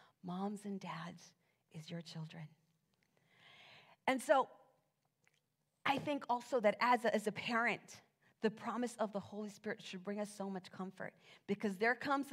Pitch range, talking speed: 165-205 Hz, 155 wpm